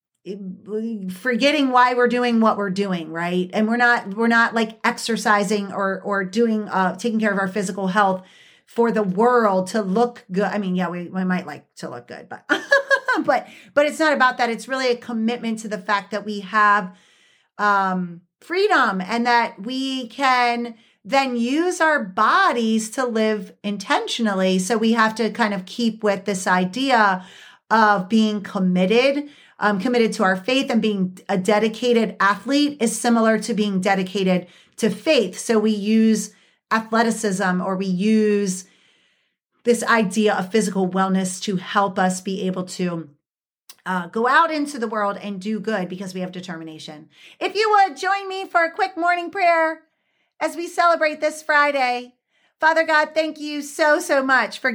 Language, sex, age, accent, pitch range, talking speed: English, female, 40-59, American, 195-255 Hz, 170 wpm